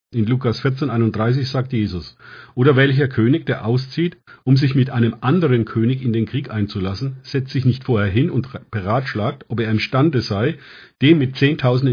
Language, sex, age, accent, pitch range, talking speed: German, male, 50-69, German, 110-140 Hz, 175 wpm